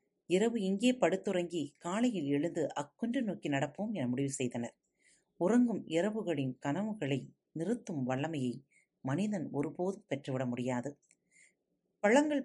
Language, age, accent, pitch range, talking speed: Tamil, 40-59, native, 140-200 Hz, 100 wpm